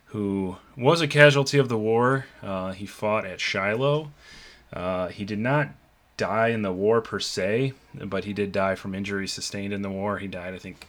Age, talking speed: 20-39, 200 wpm